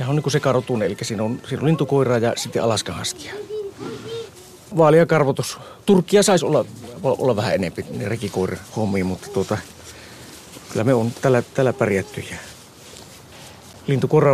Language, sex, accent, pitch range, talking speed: Finnish, male, native, 105-140 Hz, 140 wpm